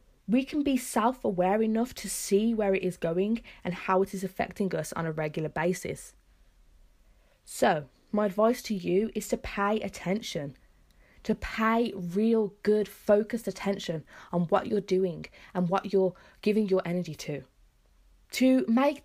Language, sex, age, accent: English, female, 20-39, British